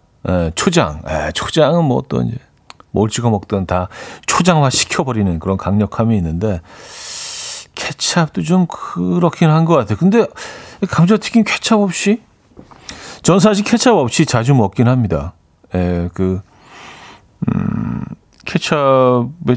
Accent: native